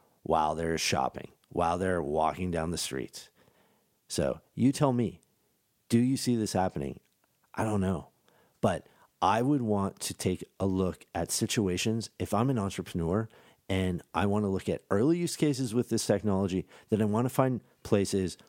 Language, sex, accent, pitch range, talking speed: English, male, American, 85-110 Hz, 170 wpm